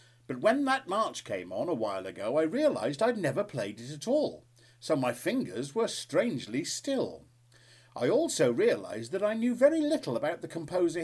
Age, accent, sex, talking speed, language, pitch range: 50-69, British, male, 185 wpm, English, 120-160 Hz